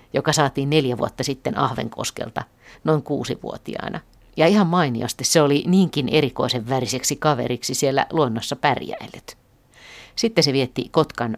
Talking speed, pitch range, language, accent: 125 wpm, 125-150 Hz, Finnish, native